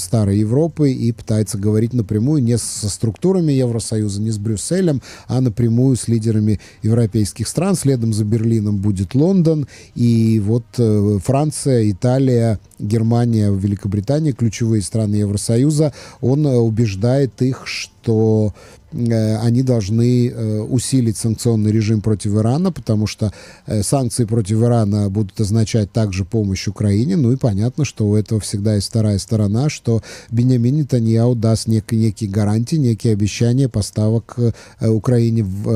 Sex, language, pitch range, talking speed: male, Russian, 105-125 Hz, 125 wpm